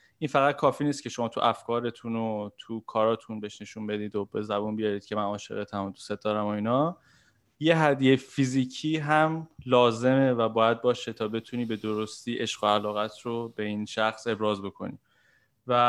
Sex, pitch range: male, 110-125 Hz